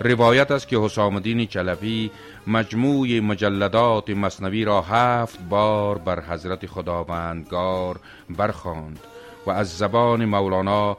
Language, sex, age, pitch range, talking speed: Persian, male, 40-59, 95-110 Hz, 105 wpm